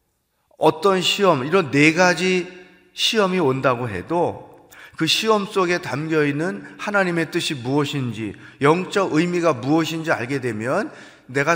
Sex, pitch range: male, 130-170 Hz